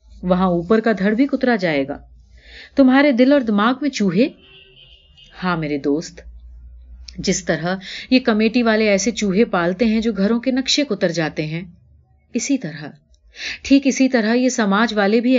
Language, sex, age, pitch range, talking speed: Urdu, female, 30-49, 180-250 Hz, 160 wpm